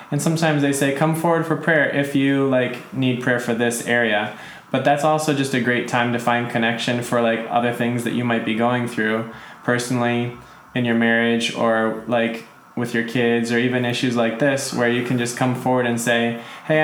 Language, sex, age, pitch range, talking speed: English, male, 20-39, 115-130 Hz, 210 wpm